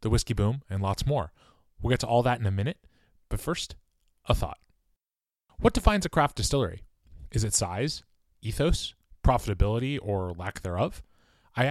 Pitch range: 95-120 Hz